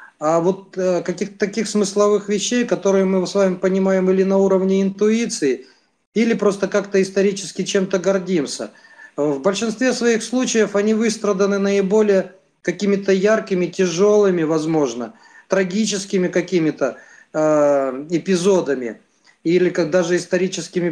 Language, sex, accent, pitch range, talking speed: Russian, male, native, 155-195 Hz, 120 wpm